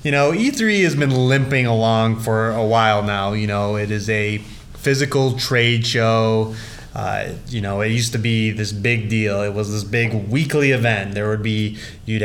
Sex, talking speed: male, 190 wpm